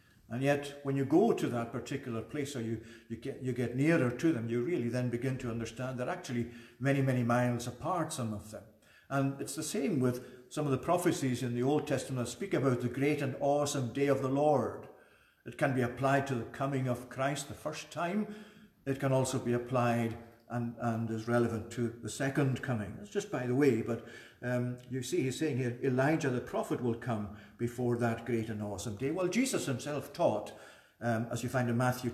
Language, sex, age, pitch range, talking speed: English, male, 50-69, 115-135 Hz, 210 wpm